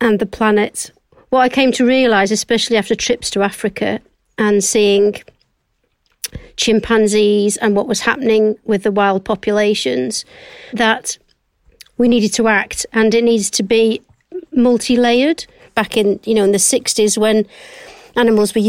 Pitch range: 205-230 Hz